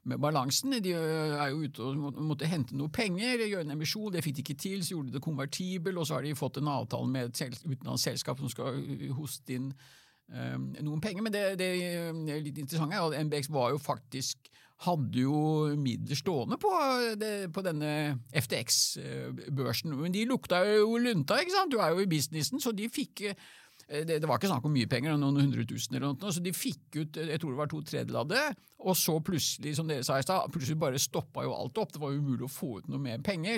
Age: 50-69